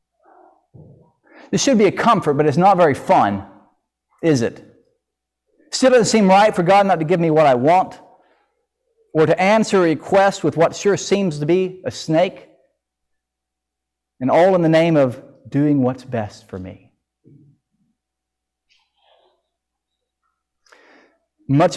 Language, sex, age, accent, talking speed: English, male, 50-69, American, 140 wpm